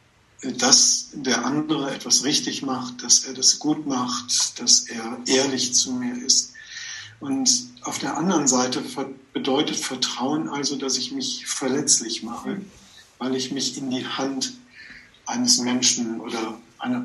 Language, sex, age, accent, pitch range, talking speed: German, male, 50-69, German, 125-150 Hz, 140 wpm